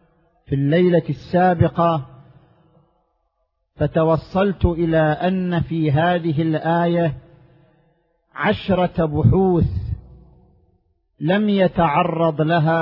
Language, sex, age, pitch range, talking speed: Arabic, male, 50-69, 160-185 Hz, 65 wpm